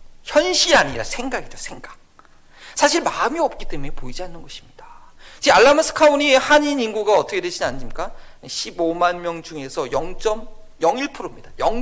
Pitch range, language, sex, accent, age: 165-270 Hz, Korean, male, native, 40-59